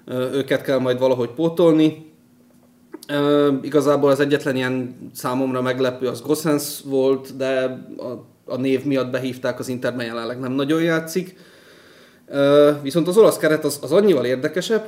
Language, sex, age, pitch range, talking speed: Hungarian, male, 30-49, 125-145 Hz, 145 wpm